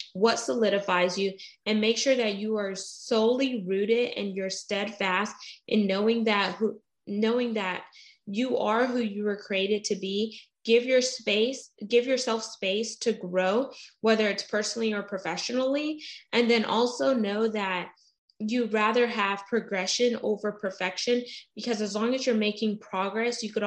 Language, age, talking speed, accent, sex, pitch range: English, 20-39, 150 wpm, American, female, 195-230 Hz